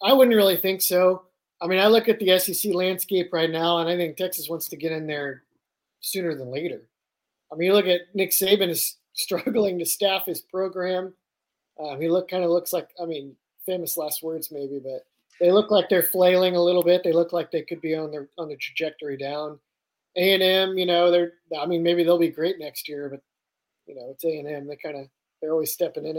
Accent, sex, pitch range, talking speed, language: American, male, 155-185 Hz, 235 wpm, English